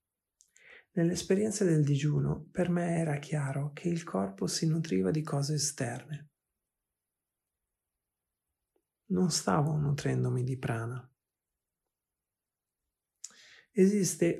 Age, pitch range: 40-59, 135-165 Hz